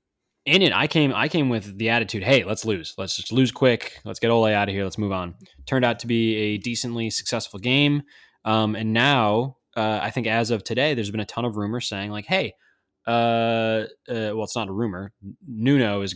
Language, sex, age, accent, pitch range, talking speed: English, male, 20-39, American, 100-125 Hz, 225 wpm